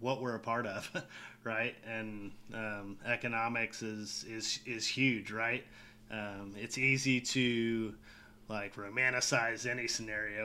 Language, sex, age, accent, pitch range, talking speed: English, male, 30-49, American, 110-125 Hz, 125 wpm